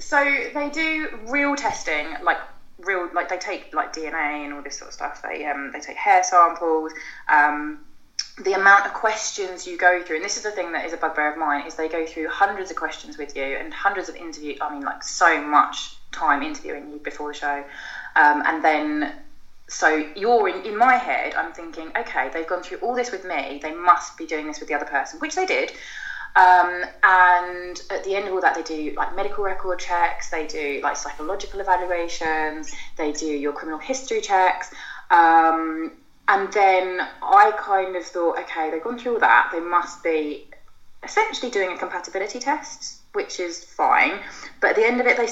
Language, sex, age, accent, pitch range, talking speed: English, female, 20-39, British, 160-240 Hz, 205 wpm